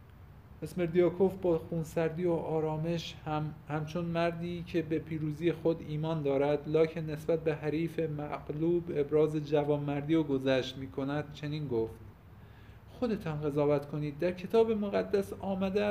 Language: Persian